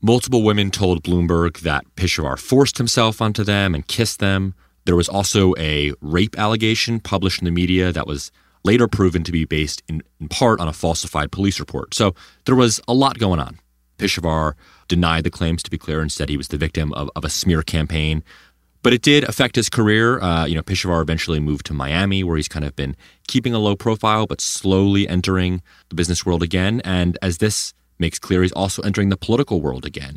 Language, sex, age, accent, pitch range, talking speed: English, male, 30-49, American, 80-105 Hz, 210 wpm